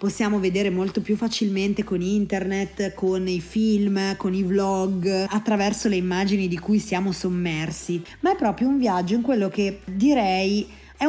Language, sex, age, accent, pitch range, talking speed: Italian, female, 20-39, native, 180-220 Hz, 160 wpm